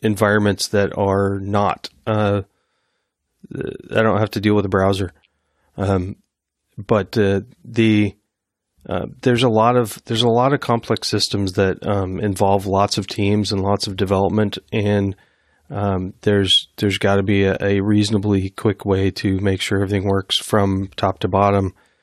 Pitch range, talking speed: 95-105 Hz, 160 wpm